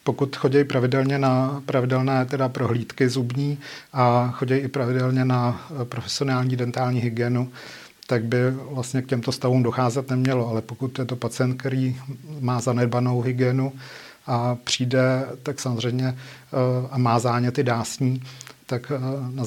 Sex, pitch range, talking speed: male, 125-130 Hz, 135 wpm